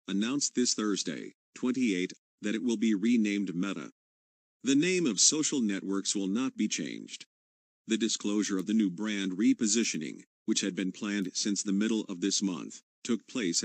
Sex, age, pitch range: male, 50-69, 95-115 Hz